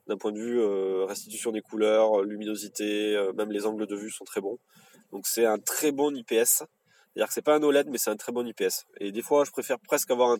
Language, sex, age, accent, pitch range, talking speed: French, male, 20-39, French, 110-140 Hz, 250 wpm